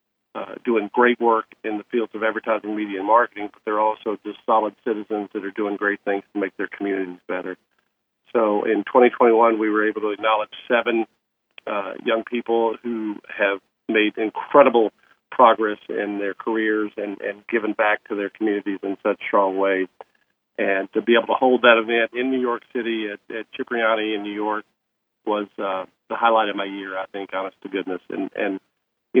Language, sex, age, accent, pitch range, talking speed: English, male, 50-69, American, 100-115 Hz, 190 wpm